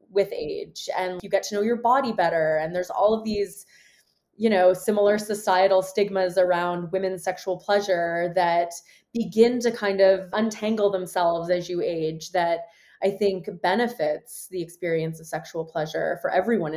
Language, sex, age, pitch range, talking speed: English, female, 20-39, 170-215 Hz, 160 wpm